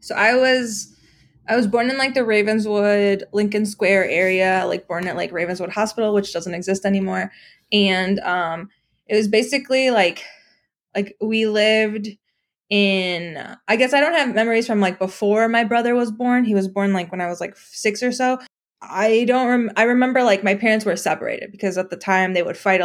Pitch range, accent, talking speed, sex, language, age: 185-220 Hz, American, 190 wpm, female, English, 20-39